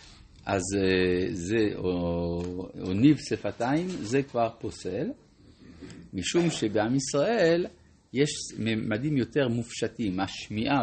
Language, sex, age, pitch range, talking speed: Hebrew, male, 50-69, 100-135 Hz, 95 wpm